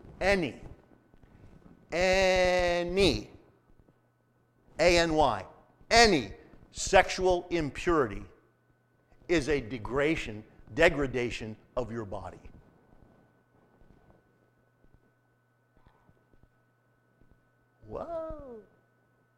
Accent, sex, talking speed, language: American, male, 40 wpm, English